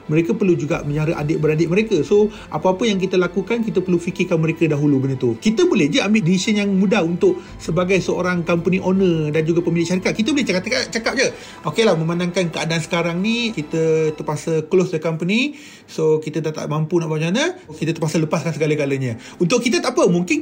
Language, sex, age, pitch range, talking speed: Malay, male, 30-49, 170-205 Hz, 195 wpm